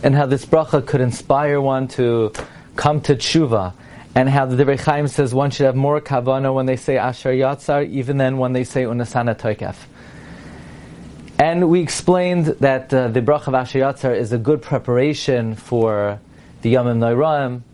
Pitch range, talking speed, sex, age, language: 120-145 Hz, 175 wpm, male, 30-49, English